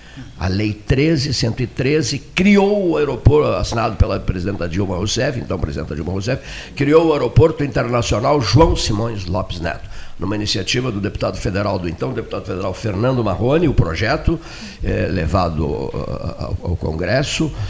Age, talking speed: 60-79, 135 wpm